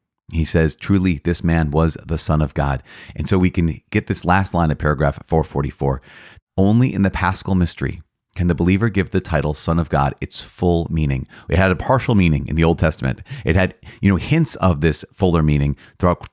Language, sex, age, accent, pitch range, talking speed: English, male, 30-49, American, 75-95 Hz, 210 wpm